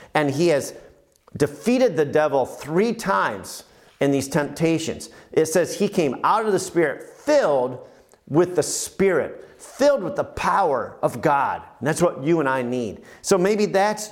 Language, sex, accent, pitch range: English, male, American, 140-195 Hz